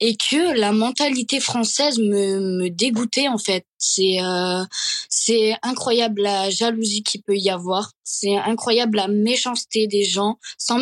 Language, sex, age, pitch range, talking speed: French, female, 20-39, 210-255 Hz, 150 wpm